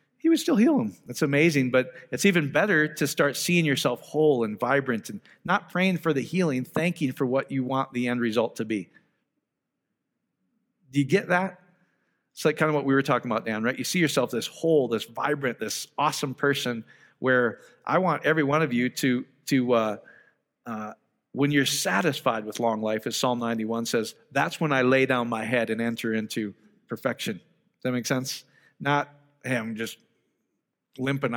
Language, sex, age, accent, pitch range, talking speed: English, male, 40-59, American, 120-150 Hz, 190 wpm